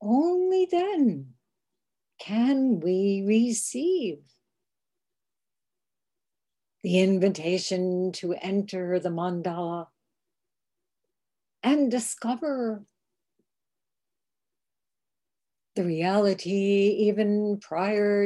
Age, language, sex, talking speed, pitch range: 60-79, English, female, 55 wpm, 175-215 Hz